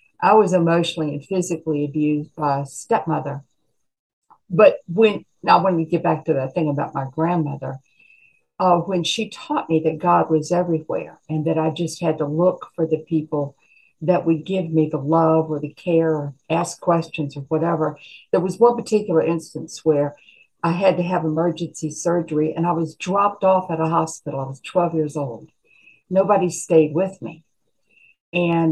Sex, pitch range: female, 155-185 Hz